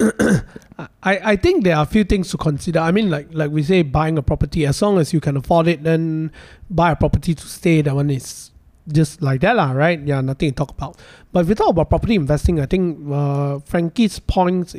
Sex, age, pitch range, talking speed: male, 20-39, 140-175 Hz, 225 wpm